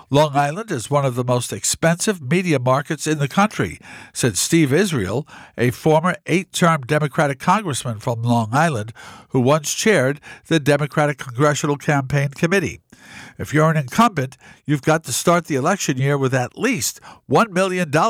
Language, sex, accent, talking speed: English, male, American, 160 wpm